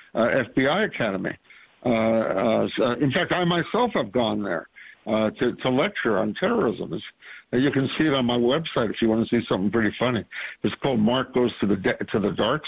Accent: American